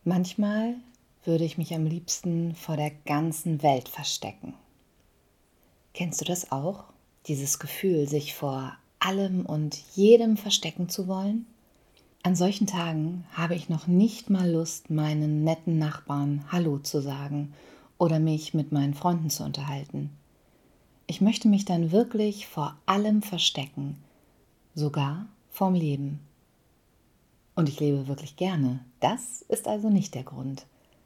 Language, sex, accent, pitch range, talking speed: German, female, German, 145-190 Hz, 135 wpm